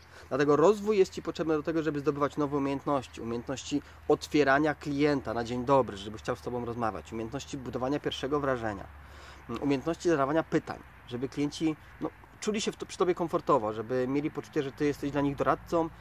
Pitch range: 120-160 Hz